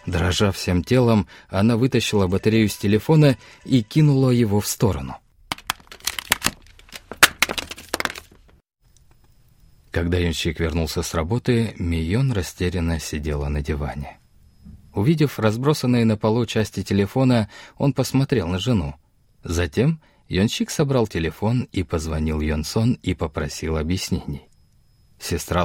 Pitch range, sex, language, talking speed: 85-120 Hz, male, Russian, 105 wpm